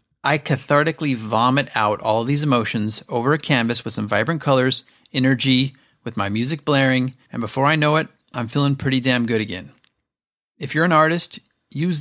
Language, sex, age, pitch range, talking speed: English, male, 30-49, 120-150 Hz, 175 wpm